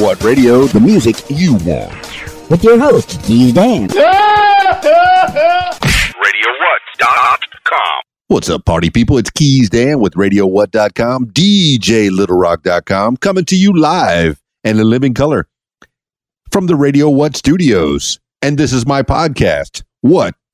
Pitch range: 105-165 Hz